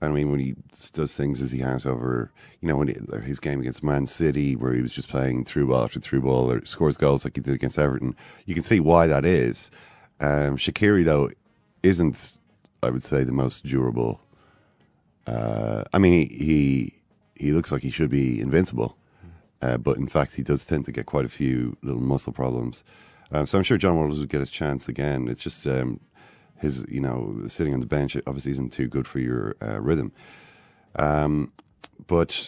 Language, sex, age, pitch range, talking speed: English, male, 30-49, 65-75 Hz, 205 wpm